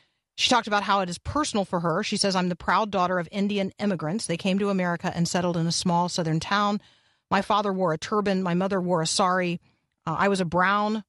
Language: English